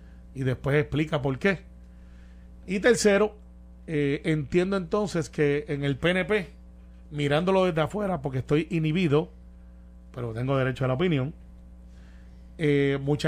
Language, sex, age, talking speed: Spanish, male, 30-49, 125 wpm